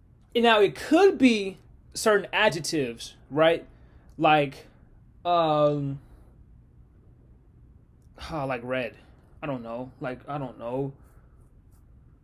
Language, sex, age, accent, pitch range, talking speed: English, male, 20-39, American, 135-190 Hz, 95 wpm